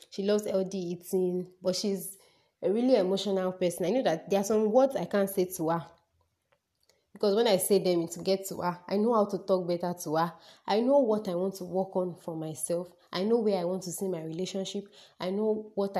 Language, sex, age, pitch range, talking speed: English, female, 20-39, 180-210 Hz, 230 wpm